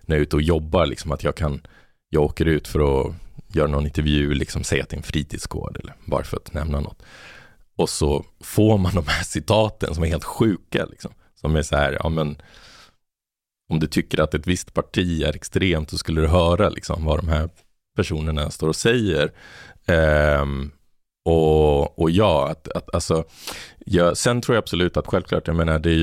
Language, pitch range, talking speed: Swedish, 75-90 Hz, 200 wpm